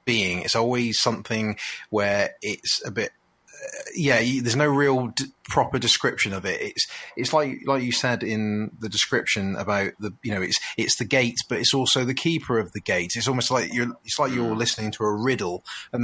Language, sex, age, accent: English, male, 30-49, British